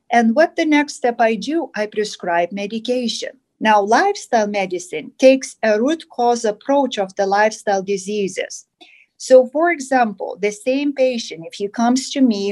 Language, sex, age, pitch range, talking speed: English, female, 40-59, 195-245 Hz, 160 wpm